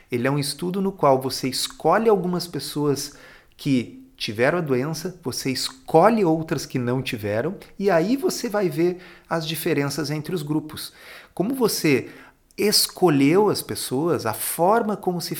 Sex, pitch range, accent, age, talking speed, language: male, 130-170 Hz, Brazilian, 40-59, 150 wpm, Portuguese